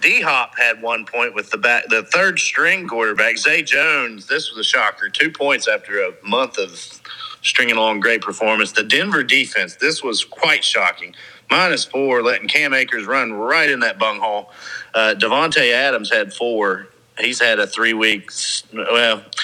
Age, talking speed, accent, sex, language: 40-59, 170 wpm, American, male, English